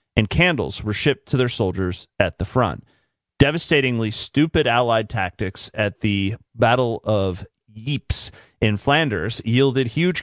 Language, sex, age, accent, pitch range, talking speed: English, male, 30-49, American, 105-130 Hz, 135 wpm